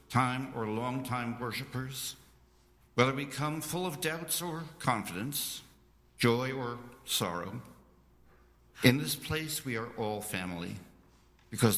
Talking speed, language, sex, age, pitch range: 120 wpm, English, male, 60-79, 90-125 Hz